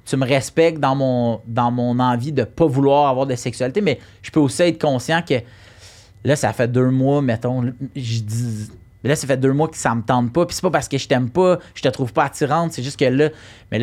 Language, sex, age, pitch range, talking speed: English, male, 30-49, 115-150 Hz, 245 wpm